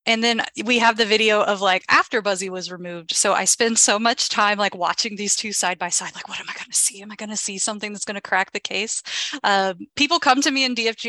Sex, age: female, 30-49